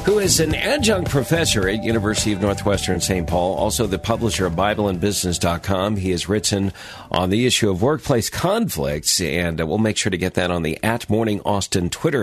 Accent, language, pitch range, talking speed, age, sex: American, English, 85-115 Hz, 185 wpm, 50-69, male